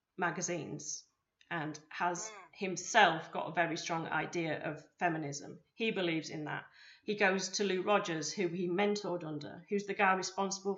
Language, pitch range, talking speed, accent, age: English, 175-205 Hz, 155 wpm, British, 30-49